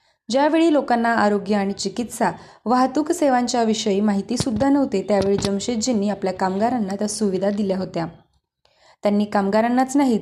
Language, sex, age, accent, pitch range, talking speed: Marathi, female, 20-39, native, 200-245 Hz, 130 wpm